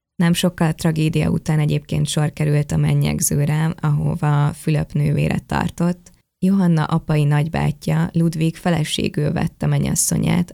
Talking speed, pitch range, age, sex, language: 125 wpm, 150-170 Hz, 20-39, female, Hungarian